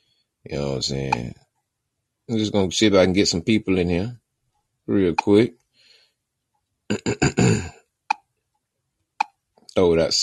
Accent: American